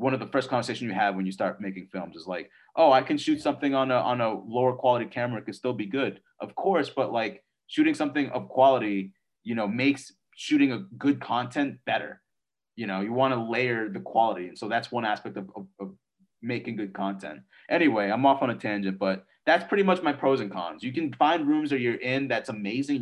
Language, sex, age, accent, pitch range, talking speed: English, male, 30-49, American, 105-145 Hz, 230 wpm